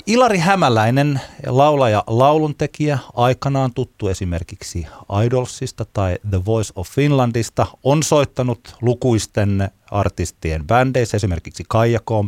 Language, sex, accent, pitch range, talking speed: Finnish, male, native, 90-130 Hz, 100 wpm